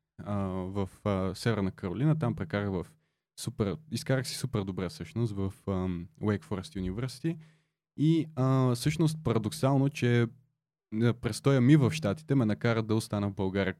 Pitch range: 105-140 Hz